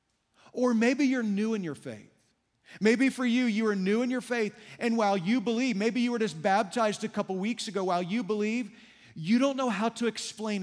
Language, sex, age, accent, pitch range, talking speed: English, male, 40-59, American, 185-240 Hz, 215 wpm